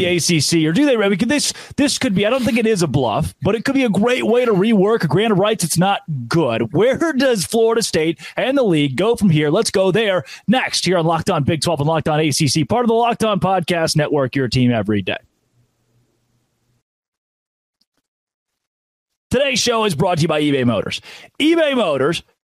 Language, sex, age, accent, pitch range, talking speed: English, male, 30-49, American, 155-225 Hz, 210 wpm